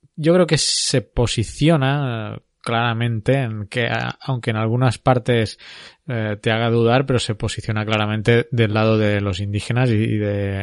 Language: Spanish